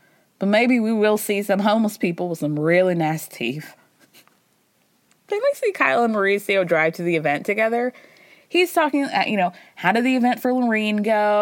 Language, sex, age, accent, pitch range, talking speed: English, female, 20-39, American, 195-275 Hz, 185 wpm